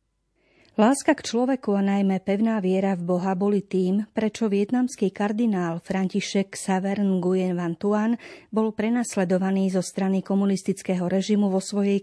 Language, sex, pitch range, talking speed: Slovak, female, 185-220 Hz, 135 wpm